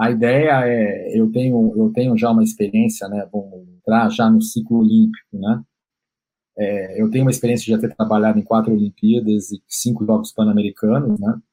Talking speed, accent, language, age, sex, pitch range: 165 wpm, Brazilian, Portuguese, 40-59, male, 110-165 Hz